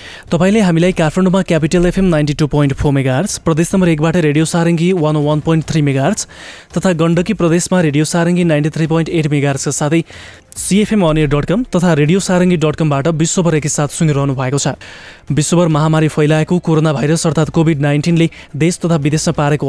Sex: male